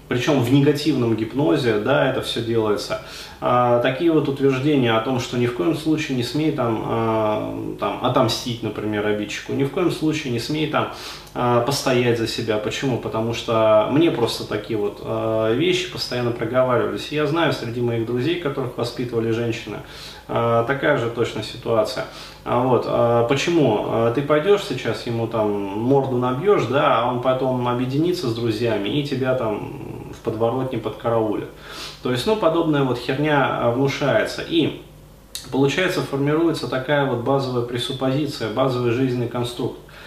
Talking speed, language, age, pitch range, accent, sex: 140 wpm, Russian, 20-39, 115-140 Hz, native, male